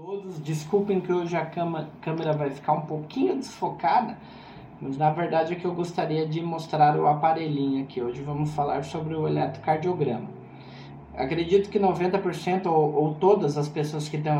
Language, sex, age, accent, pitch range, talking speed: Portuguese, male, 20-39, Brazilian, 150-200 Hz, 165 wpm